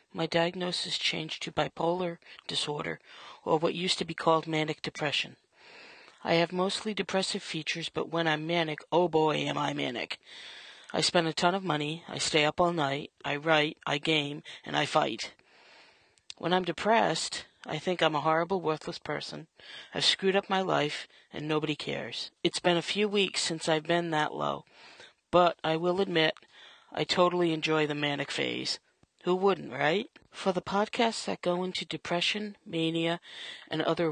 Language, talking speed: English, 170 wpm